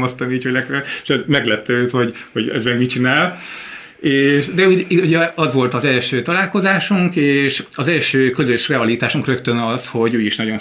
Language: Hungarian